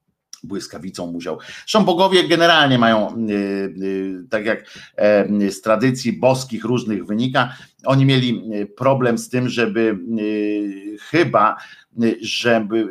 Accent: native